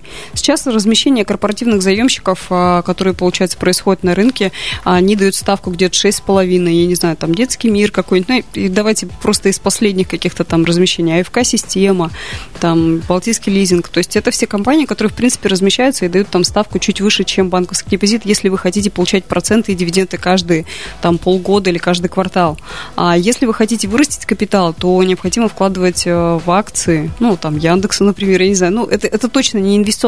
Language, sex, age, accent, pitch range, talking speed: Russian, female, 20-39, native, 180-210 Hz, 180 wpm